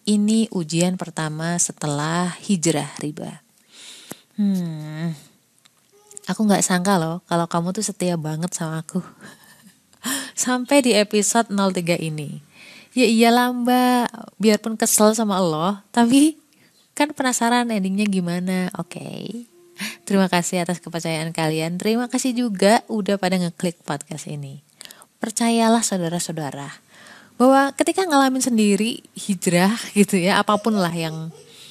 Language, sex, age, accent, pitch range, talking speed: Indonesian, female, 20-39, native, 165-215 Hz, 115 wpm